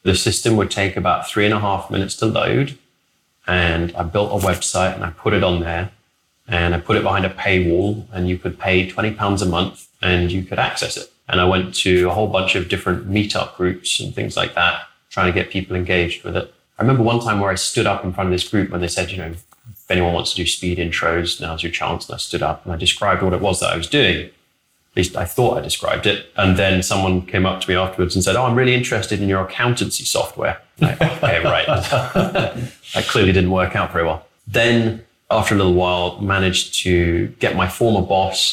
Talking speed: 235 wpm